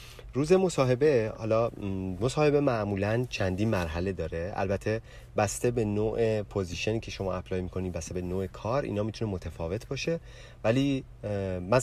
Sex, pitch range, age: male, 90-120 Hz, 30-49